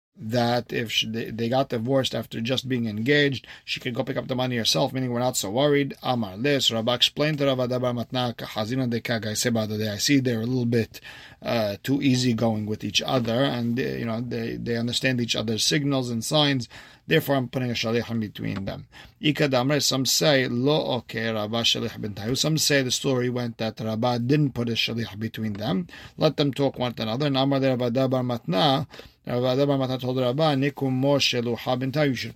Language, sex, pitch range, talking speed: English, male, 115-135 Hz, 165 wpm